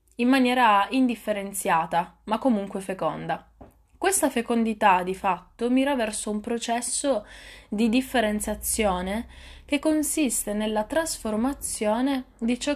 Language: Italian